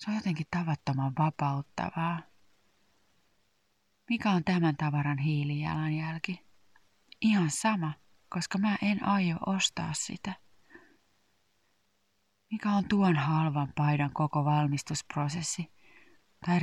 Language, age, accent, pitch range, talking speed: Finnish, 30-49, native, 145-170 Hz, 95 wpm